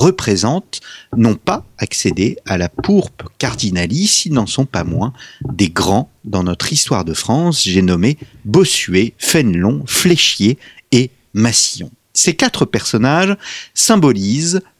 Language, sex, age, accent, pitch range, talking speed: French, male, 40-59, French, 105-145 Hz, 125 wpm